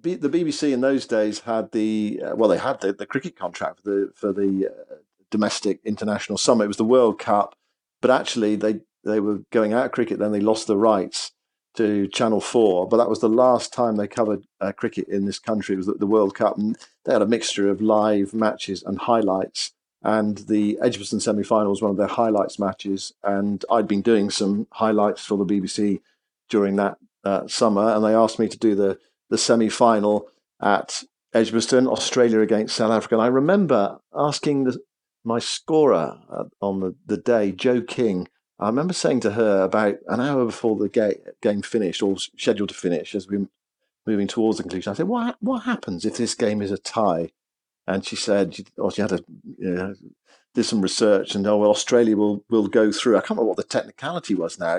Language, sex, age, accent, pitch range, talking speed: English, male, 50-69, British, 100-120 Hz, 205 wpm